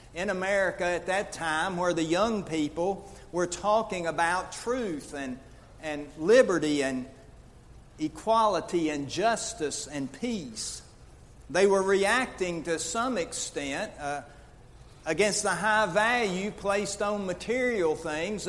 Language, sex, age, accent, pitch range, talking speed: English, male, 60-79, American, 140-190 Hz, 120 wpm